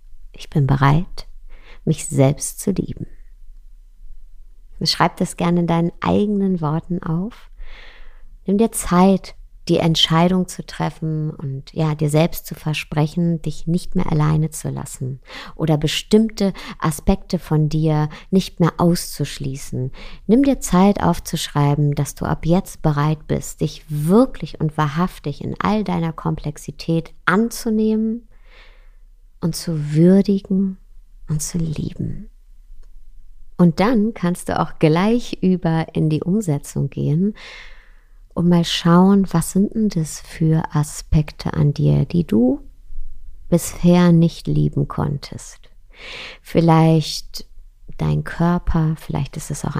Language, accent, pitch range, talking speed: German, German, 150-180 Hz, 125 wpm